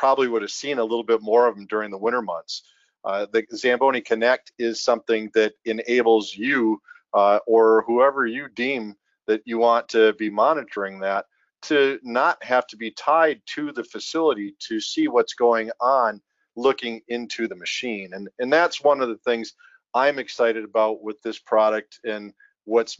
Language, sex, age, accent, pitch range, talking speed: English, male, 40-59, American, 110-140 Hz, 175 wpm